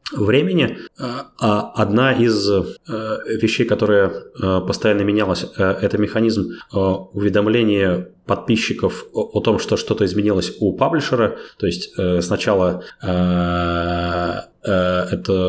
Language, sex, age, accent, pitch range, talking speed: Russian, male, 30-49, native, 90-105 Hz, 95 wpm